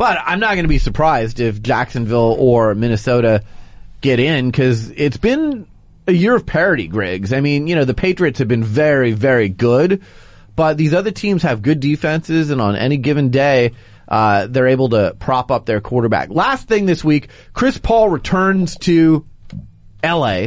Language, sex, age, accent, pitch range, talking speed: English, male, 30-49, American, 120-175 Hz, 180 wpm